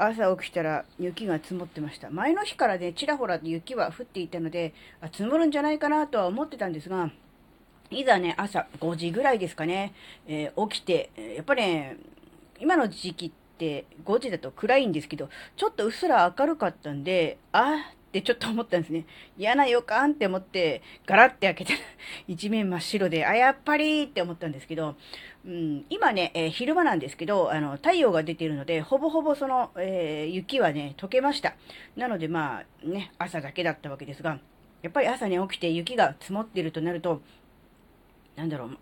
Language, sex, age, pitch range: Japanese, female, 40-59, 160-235 Hz